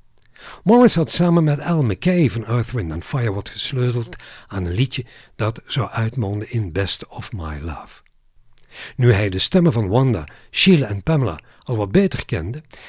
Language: Dutch